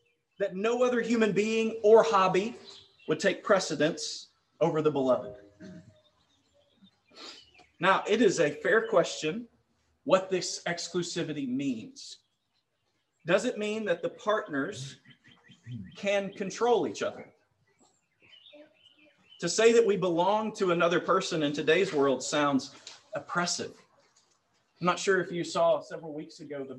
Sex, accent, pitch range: male, American, 150-225 Hz